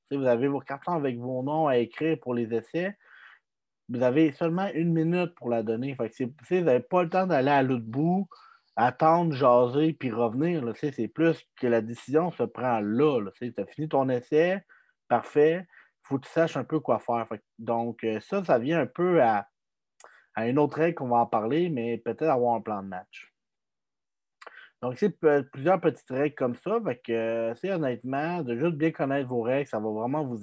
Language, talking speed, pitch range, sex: French, 215 wpm, 115-160 Hz, male